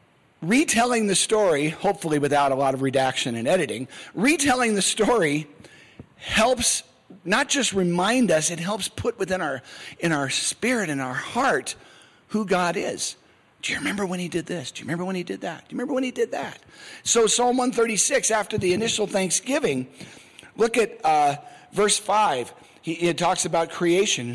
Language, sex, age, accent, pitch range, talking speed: English, male, 50-69, American, 160-220 Hz, 175 wpm